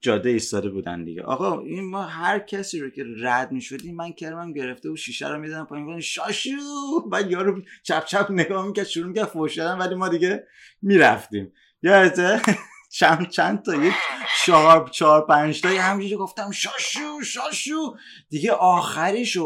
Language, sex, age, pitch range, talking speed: Persian, male, 30-49, 145-205 Hz, 145 wpm